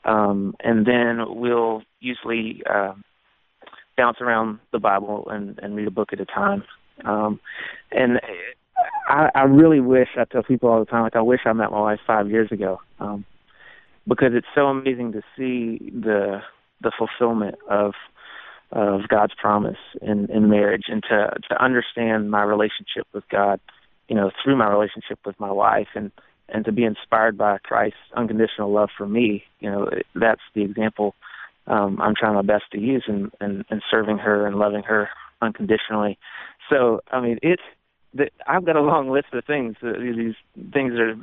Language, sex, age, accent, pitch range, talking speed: English, male, 30-49, American, 105-125 Hz, 180 wpm